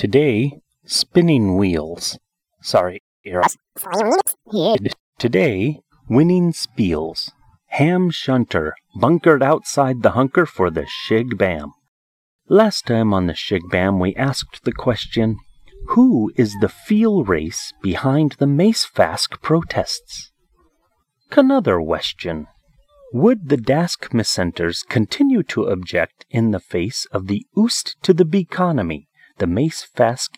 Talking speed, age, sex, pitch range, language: 100 wpm, 30-49, male, 100-165 Hz, English